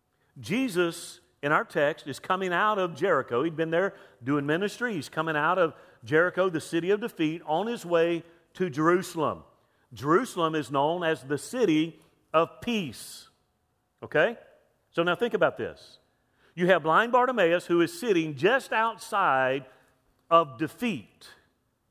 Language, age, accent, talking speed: English, 50-69, American, 145 wpm